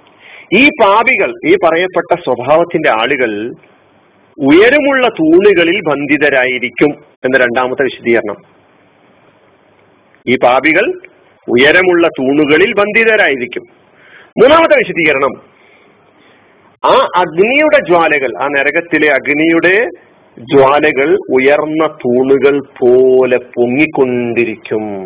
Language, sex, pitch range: Malayalam, male, 130-175 Hz